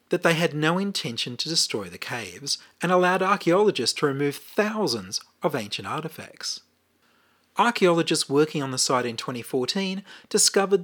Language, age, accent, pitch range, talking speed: English, 40-59, Australian, 130-175 Hz, 145 wpm